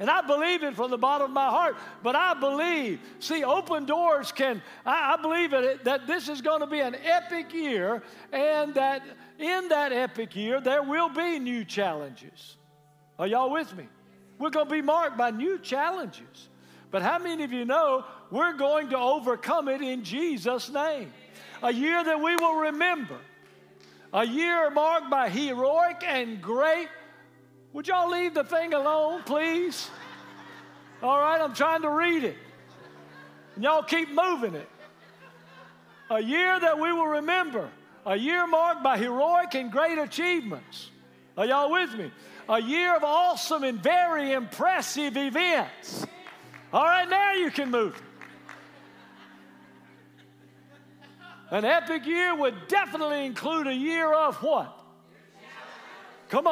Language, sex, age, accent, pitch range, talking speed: English, male, 60-79, American, 260-330 Hz, 150 wpm